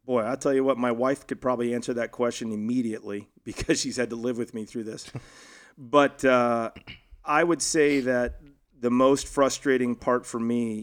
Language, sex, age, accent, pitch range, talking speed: English, male, 40-59, American, 115-130 Hz, 190 wpm